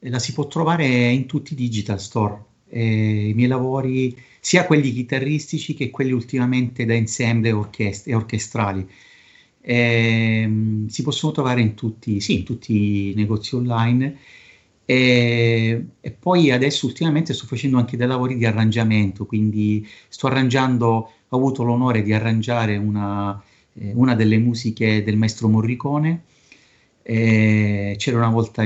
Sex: male